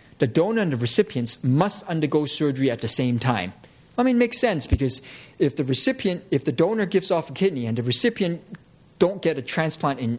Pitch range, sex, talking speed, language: 125-160 Hz, male, 210 wpm, English